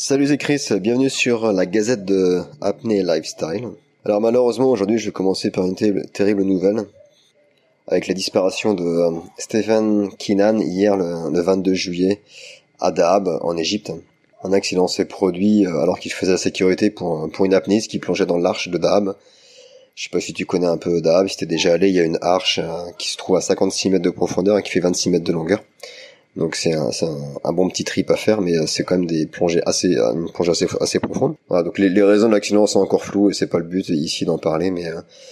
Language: French